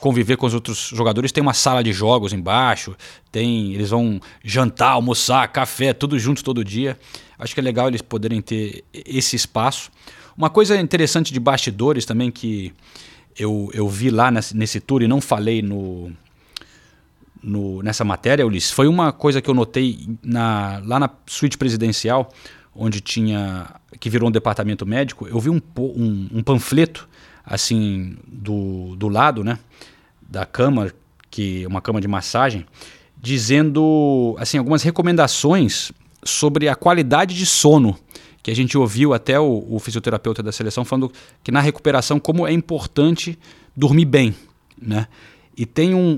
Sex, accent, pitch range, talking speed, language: male, Brazilian, 110-145 Hz, 155 wpm, Portuguese